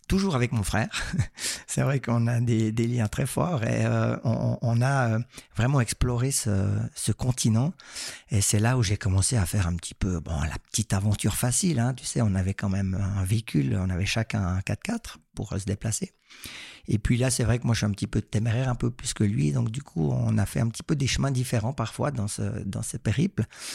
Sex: male